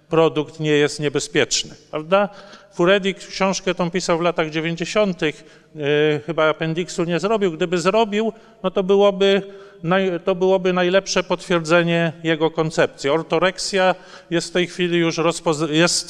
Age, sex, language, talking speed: 40-59, male, Polish, 140 wpm